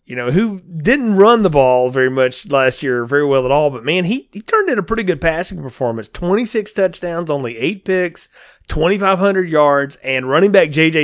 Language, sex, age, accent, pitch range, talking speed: English, male, 30-49, American, 130-185 Hz, 200 wpm